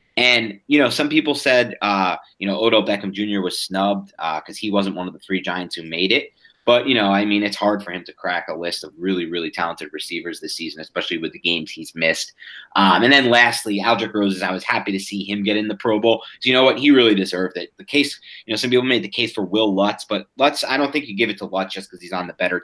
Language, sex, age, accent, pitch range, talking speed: English, male, 30-49, American, 95-115 Hz, 280 wpm